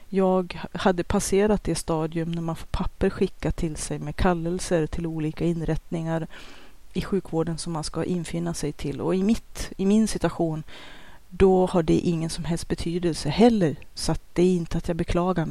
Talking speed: 180 wpm